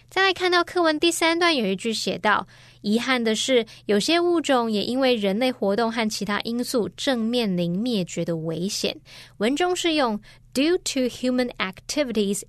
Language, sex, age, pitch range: Chinese, female, 20-39, 195-255 Hz